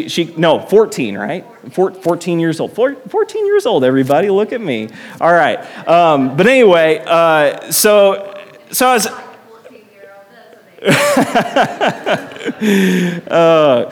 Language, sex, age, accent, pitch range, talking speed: English, male, 30-49, American, 145-195 Hz, 120 wpm